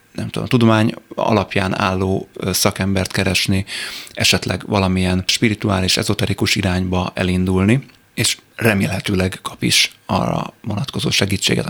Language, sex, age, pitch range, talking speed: Hungarian, male, 30-49, 95-110 Hz, 110 wpm